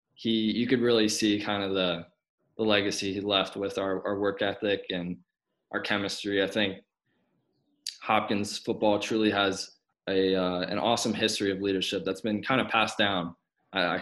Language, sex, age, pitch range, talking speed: English, male, 20-39, 95-105 Hz, 175 wpm